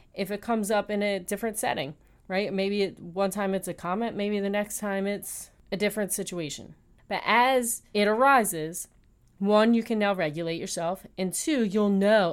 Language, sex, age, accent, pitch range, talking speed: English, female, 30-49, American, 190-230 Hz, 180 wpm